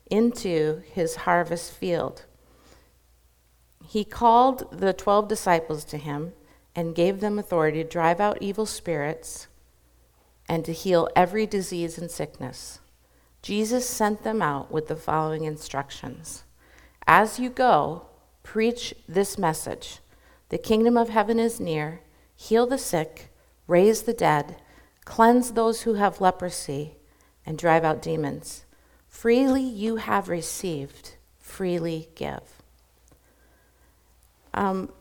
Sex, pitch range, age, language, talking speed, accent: female, 160-215 Hz, 50-69, English, 120 wpm, American